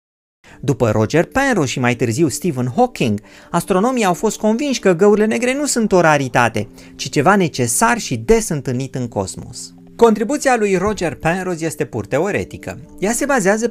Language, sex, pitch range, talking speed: Romanian, male, 120-200 Hz, 160 wpm